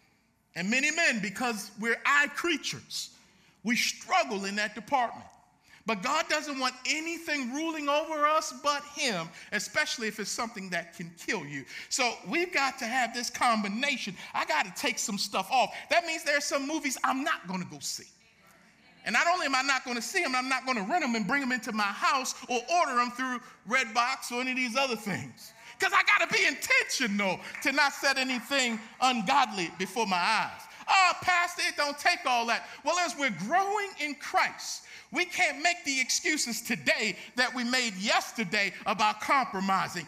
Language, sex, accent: English, male, American